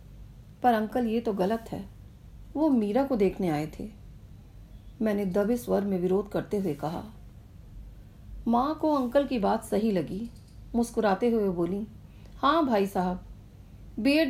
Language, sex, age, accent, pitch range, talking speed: English, female, 40-59, Indian, 180-260 Hz, 145 wpm